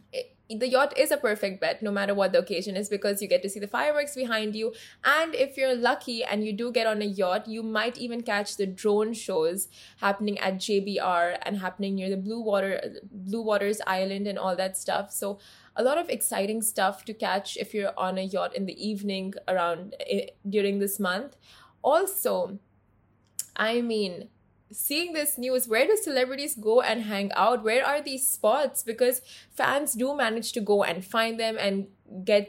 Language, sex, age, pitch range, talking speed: Arabic, female, 20-39, 200-250 Hz, 190 wpm